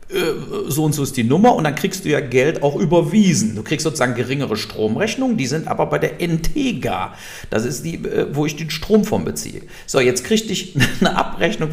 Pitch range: 110-160 Hz